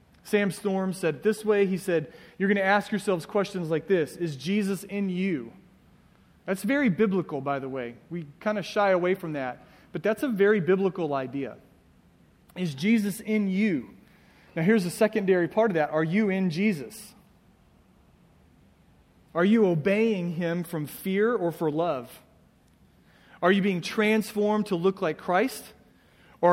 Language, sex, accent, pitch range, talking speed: English, male, American, 155-205 Hz, 160 wpm